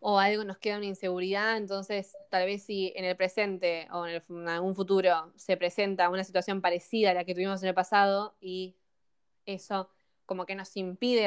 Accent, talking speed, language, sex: Argentinian, 195 wpm, Spanish, female